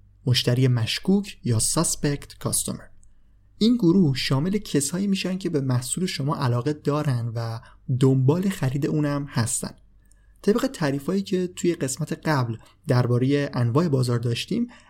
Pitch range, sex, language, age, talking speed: 115-150 Hz, male, Persian, 30-49, 125 wpm